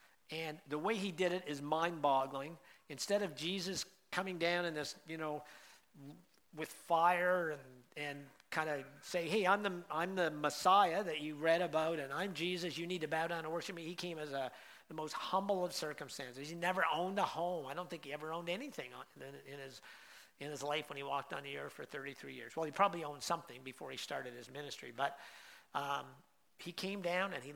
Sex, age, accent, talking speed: male, 50-69, American, 210 wpm